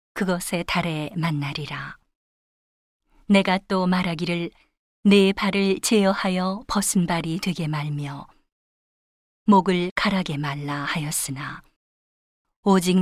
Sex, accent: female, native